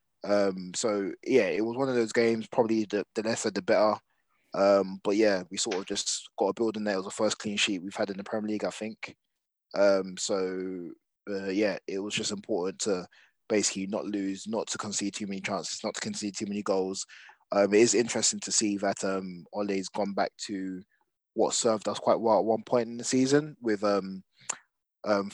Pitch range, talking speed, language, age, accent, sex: 95-110 Hz, 215 wpm, English, 20-39, British, male